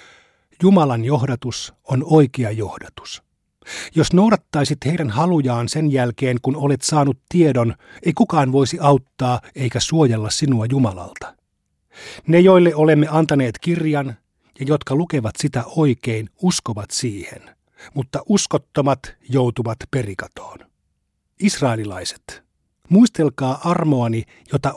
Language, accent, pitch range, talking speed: Finnish, native, 120-150 Hz, 105 wpm